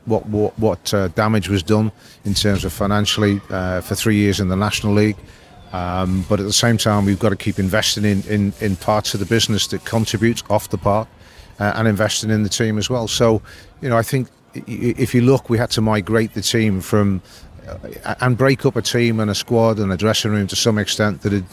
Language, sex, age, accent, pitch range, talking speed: English, male, 40-59, British, 95-110 Hz, 230 wpm